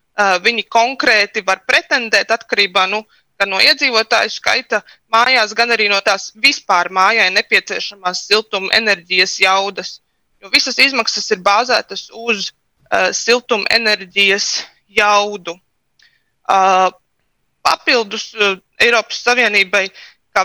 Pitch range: 195-230 Hz